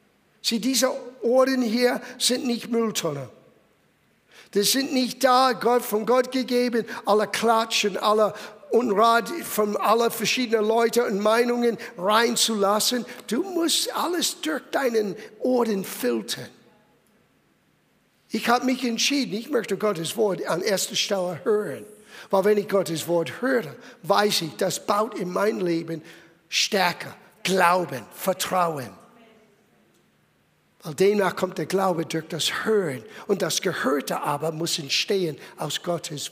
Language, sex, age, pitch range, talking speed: German, male, 60-79, 195-275 Hz, 125 wpm